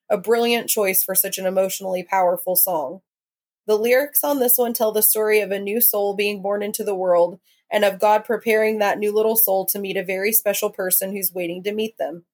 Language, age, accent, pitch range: English, 20-39, American, 190-220 Hz